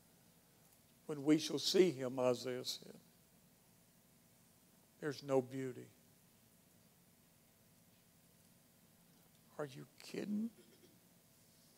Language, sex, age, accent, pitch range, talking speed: English, male, 60-79, American, 150-215 Hz, 65 wpm